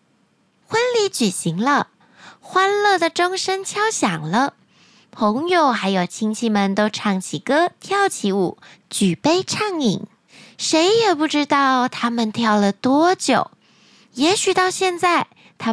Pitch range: 215-310 Hz